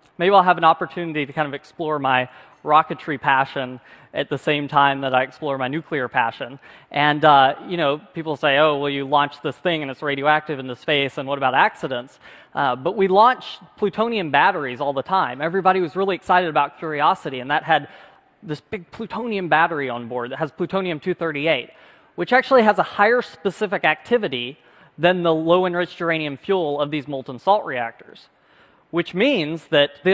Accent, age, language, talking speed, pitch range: American, 20-39, English, 185 wpm, 145-190 Hz